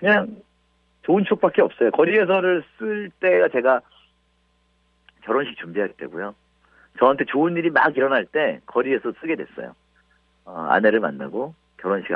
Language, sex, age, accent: Korean, male, 50-69, native